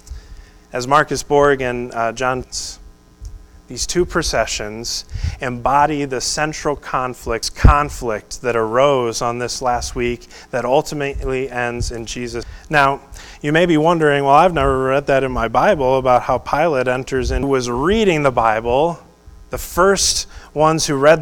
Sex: male